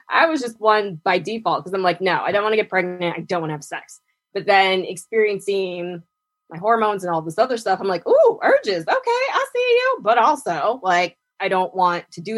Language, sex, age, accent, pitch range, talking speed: English, female, 20-39, American, 180-275 Hz, 235 wpm